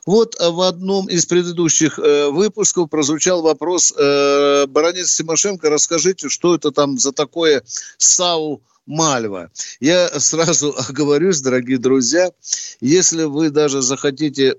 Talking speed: 115 wpm